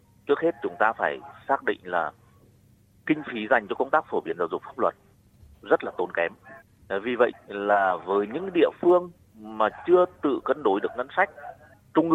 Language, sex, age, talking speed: Vietnamese, male, 30-49, 200 wpm